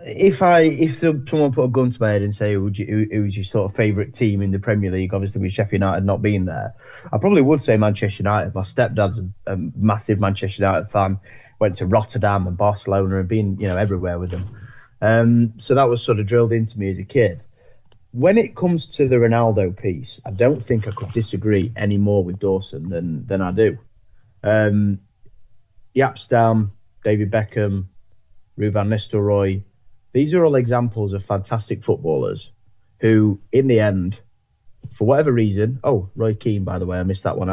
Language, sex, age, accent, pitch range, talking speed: English, male, 20-39, British, 100-120 Hz, 195 wpm